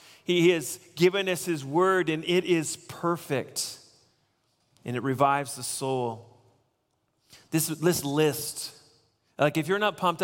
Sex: male